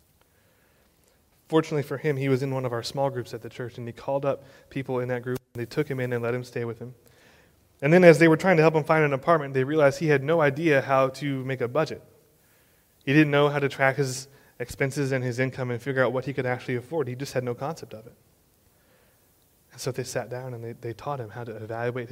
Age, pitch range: 20-39, 115-140 Hz